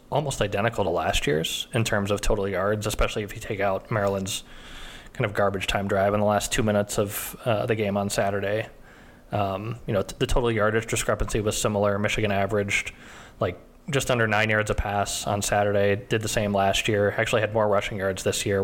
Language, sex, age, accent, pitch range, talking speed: English, male, 20-39, American, 100-110 Hz, 205 wpm